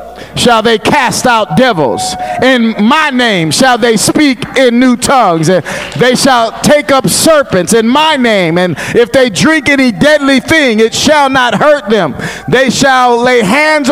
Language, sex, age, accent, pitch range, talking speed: English, male, 50-69, American, 195-290 Hz, 170 wpm